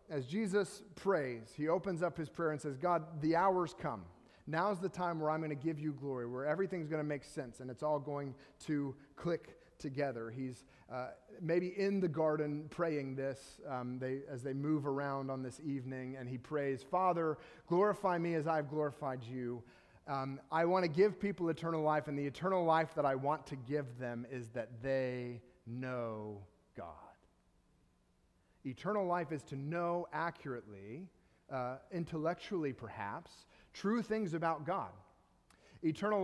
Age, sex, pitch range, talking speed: 30-49, male, 135-175 Hz, 165 wpm